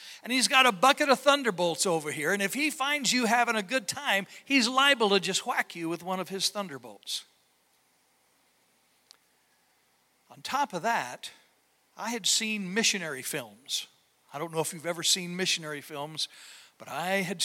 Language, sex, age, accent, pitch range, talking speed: English, male, 60-79, American, 195-260 Hz, 170 wpm